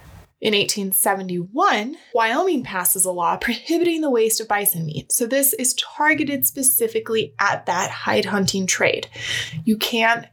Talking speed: 140 wpm